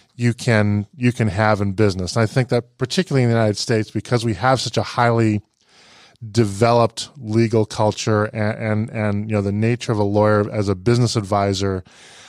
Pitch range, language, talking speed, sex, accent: 105-120 Hz, English, 190 wpm, male, American